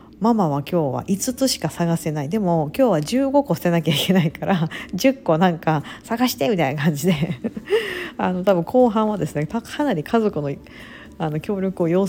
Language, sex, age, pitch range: Japanese, female, 50-69, 155-205 Hz